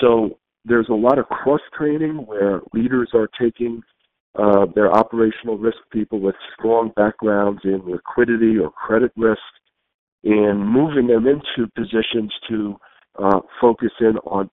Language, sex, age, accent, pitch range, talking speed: English, male, 50-69, American, 100-120 Hz, 135 wpm